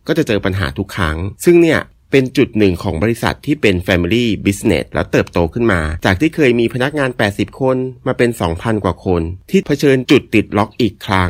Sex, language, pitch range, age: male, Thai, 95-130 Hz, 30-49